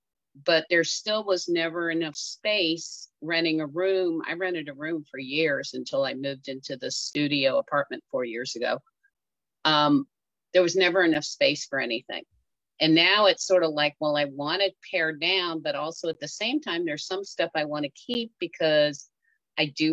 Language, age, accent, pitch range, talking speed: English, 50-69, American, 150-190 Hz, 185 wpm